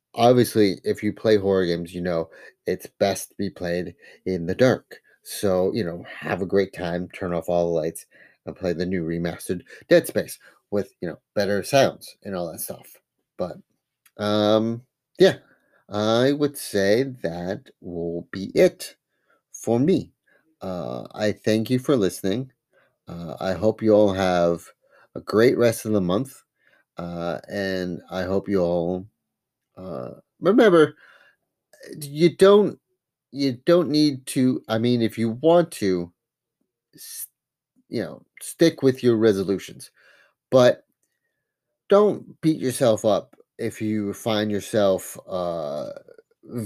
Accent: American